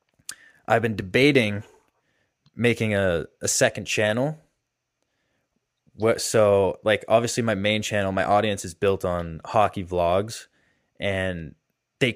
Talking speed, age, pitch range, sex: 115 wpm, 20-39, 95-115 Hz, male